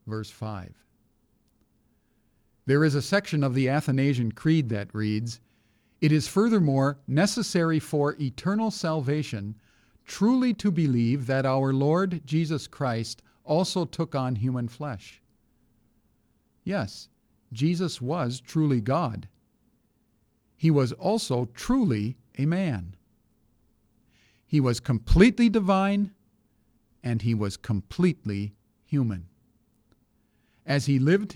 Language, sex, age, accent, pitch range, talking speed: English, male, 50-69, American, 115-160 Hz, 105 wpm